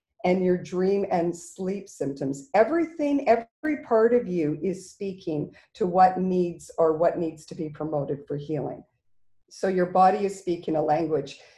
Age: 50-69